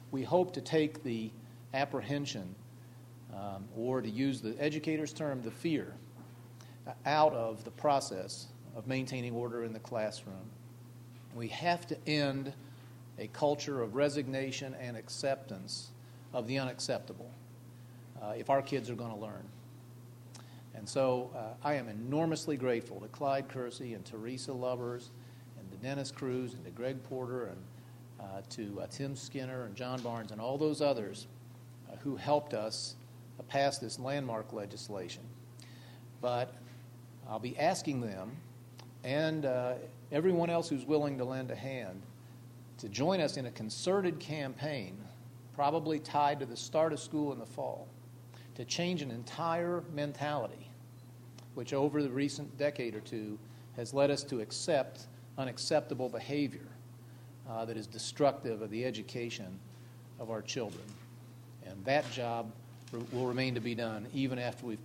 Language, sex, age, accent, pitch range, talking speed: English, male, 40-59, American, 120-135 Hz, 150 wpm